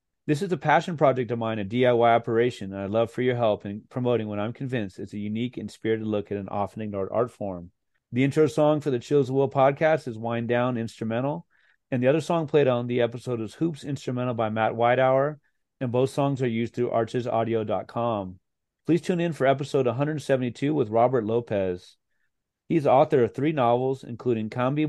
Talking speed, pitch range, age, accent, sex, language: 200 wpm, 110-140 Hz, 30-49, American, male, English